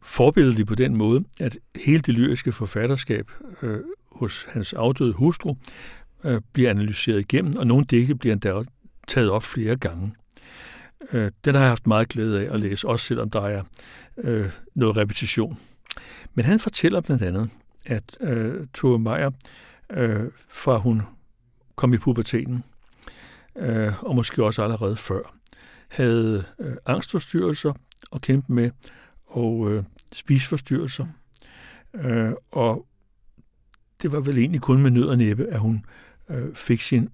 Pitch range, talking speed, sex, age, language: 110-130 Hz, 145 wpm, male, 60-79, Danish